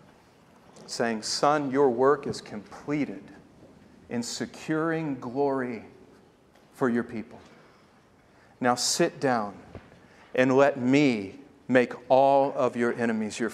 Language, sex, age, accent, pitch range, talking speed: English, male, 40-59, American, 125-150 Hz, 105 wpm